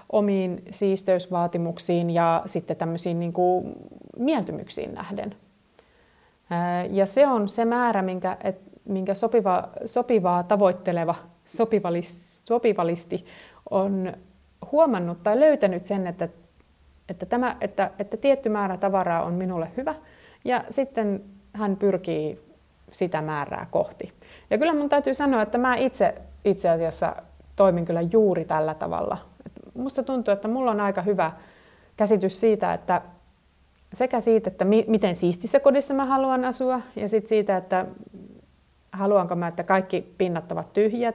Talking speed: 120 wpm